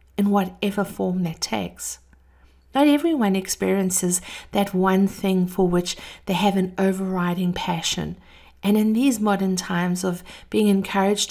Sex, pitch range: female, 180-215 Hz